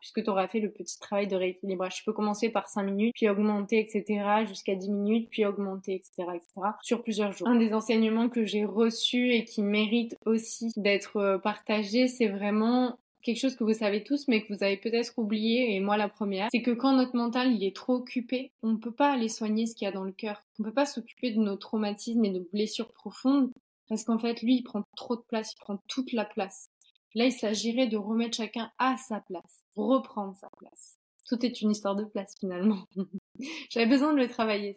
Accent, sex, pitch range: French, female, 205-245 Hz